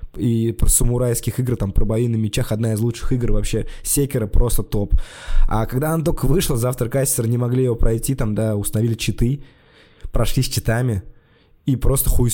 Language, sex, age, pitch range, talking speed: Russian, male, 20-39, 105-125 Hz, 185 wpm